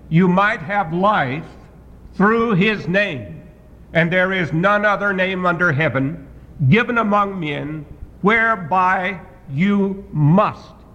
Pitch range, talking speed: 145-200 Hz, 115 wpm